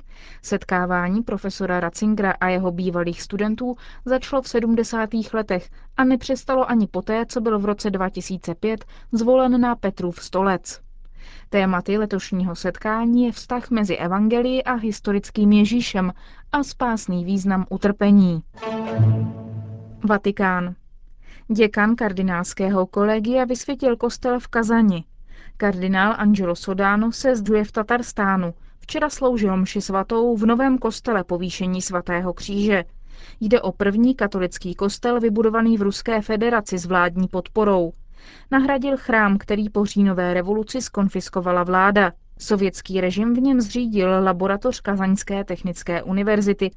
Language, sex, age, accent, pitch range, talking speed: Czech, female, 20-39, native, 185-230 Hz, 120 wpm